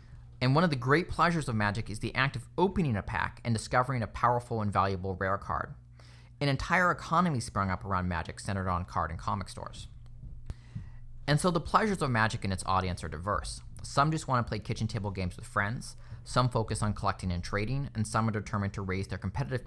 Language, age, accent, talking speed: English, 30-49, American, 215 wpm